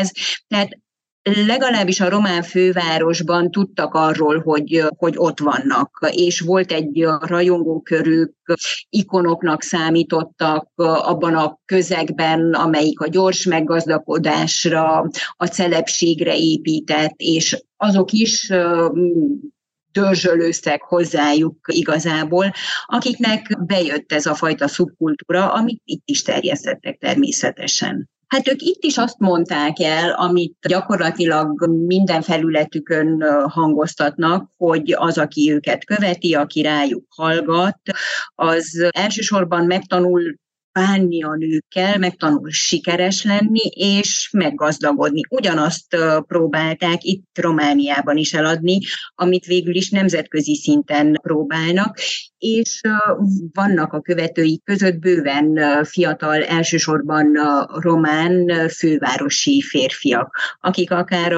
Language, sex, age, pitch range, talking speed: Hungarian, female, 30-49, 155-185 Hz, 100 wpm